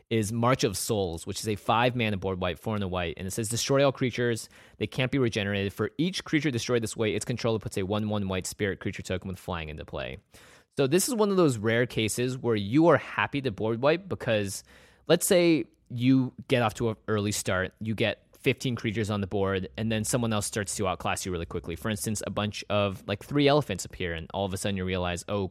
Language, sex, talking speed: English, male, 240 wpm